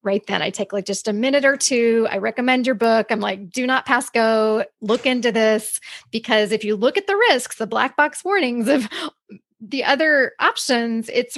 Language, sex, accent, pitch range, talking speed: English, female, American, 215-270 Hz, 205 wpm